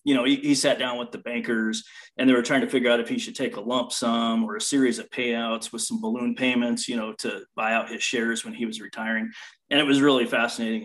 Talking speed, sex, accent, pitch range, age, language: 265 wpm, male, American, 115-145 Hz, 30-49, English